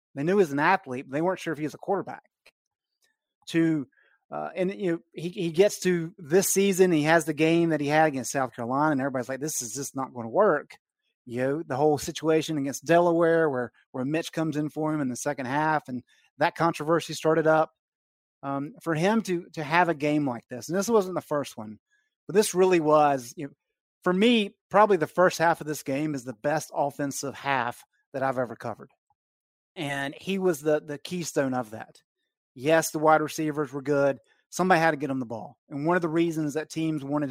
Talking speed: 220 wpm